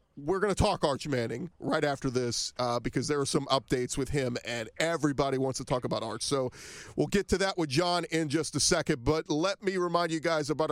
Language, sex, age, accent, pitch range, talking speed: English, male, 40-59, American, 130-155 Hz, 235 wpm